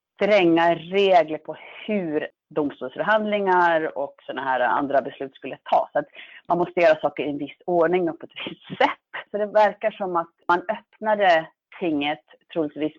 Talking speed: 155 wpm